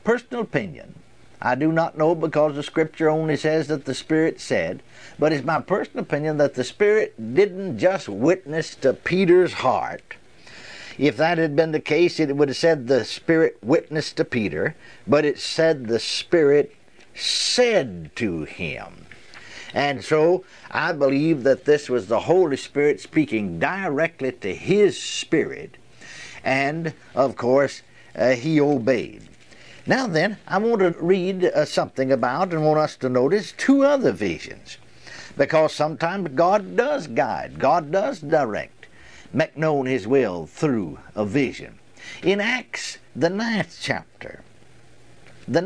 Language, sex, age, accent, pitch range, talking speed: English, male, 60-79, American, 140-185 Hz, 145 wpm